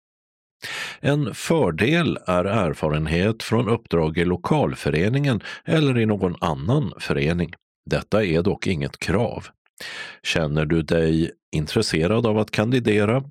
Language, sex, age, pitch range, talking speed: Swedish, male, 50-69, 80-125 Hz, 115 wpm